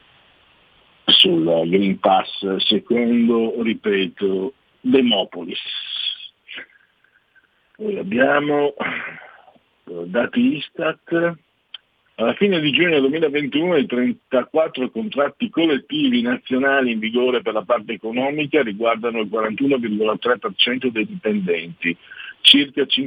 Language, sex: Italian, male